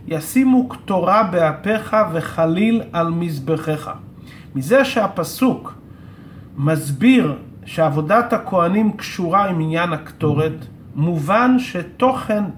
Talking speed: 80 wpm